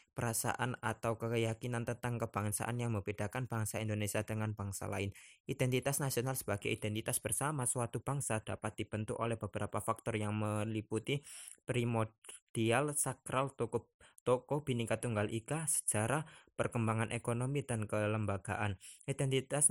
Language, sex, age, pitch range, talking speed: Indonesian, male, 20-39, 105-125 Hz, 120 wpm